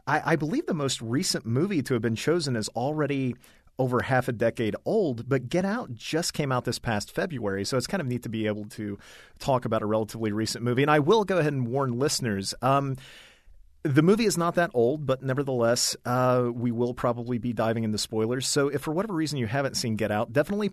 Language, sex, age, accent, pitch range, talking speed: English, male, 40-59, American, 110-140 Hz, 225 wpm